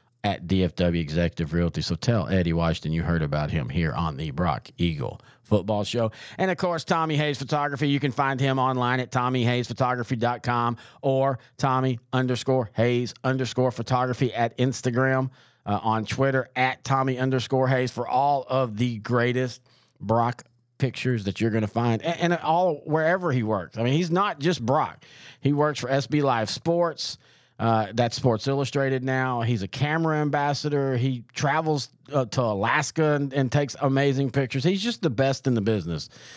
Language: English